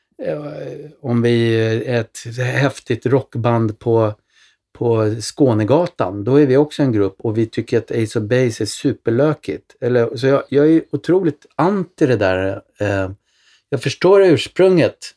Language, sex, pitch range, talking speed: Swedish, male, 100-125 Hz, 140 wpm